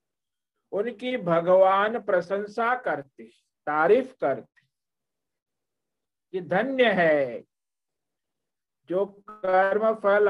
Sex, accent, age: male, native, 50-69